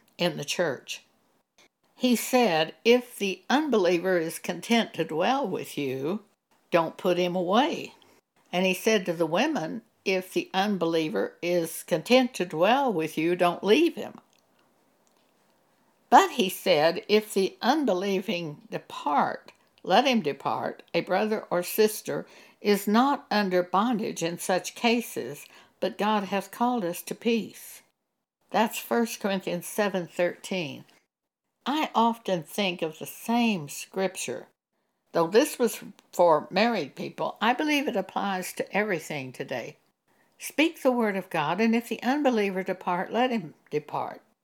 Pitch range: 180-235 Hz